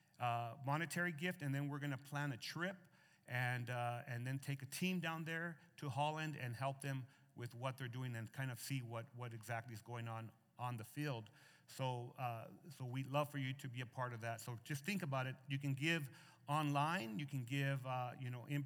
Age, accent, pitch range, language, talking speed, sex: 40-59, American, 120-150 Hz, English, 230 wpm, male